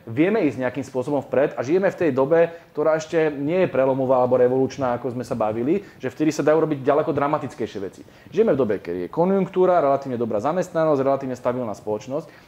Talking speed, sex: 195 wpm, male